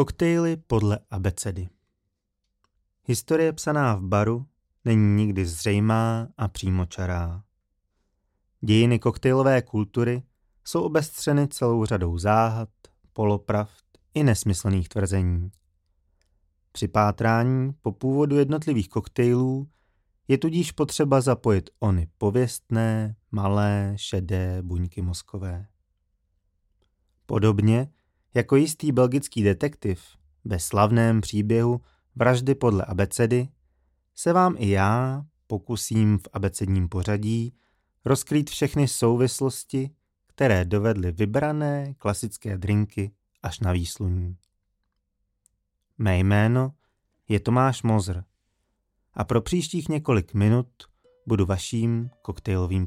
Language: Czech